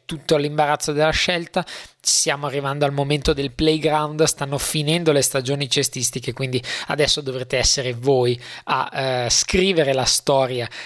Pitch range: 130-155 Hz